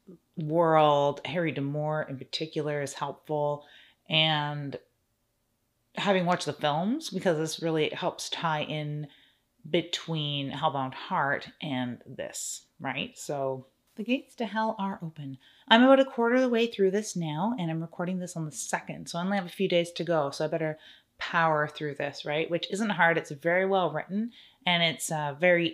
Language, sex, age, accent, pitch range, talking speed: English, female, 30-49, American, 150-180 Hz, 175 wpm